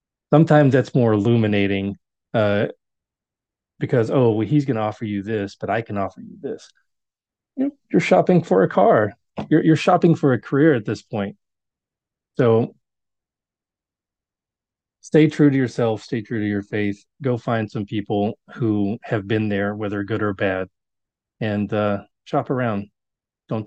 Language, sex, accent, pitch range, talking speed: English, male, American, 100-125 Hz, 150 wpm